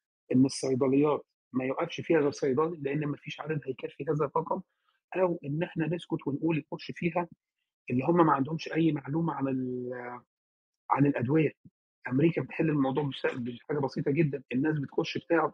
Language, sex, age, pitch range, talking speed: Arabic, male, 40-59, 140-170 Hz, 145 wpm